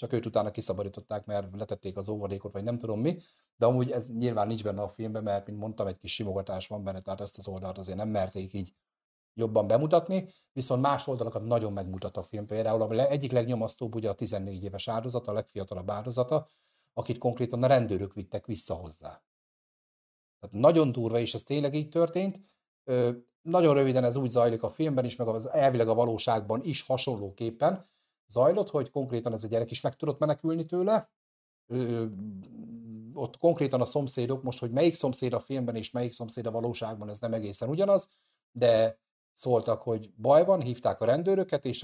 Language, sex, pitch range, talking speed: Hungarian, male, 105-135 Hz, 185 wpm